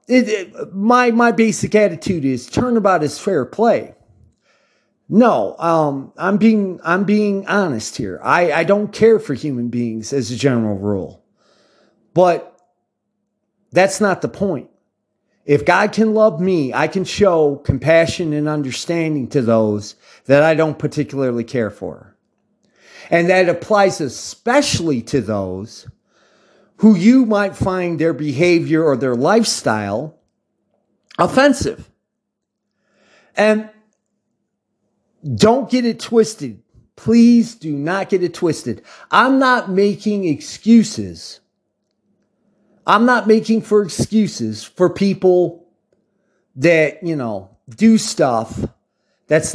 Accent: American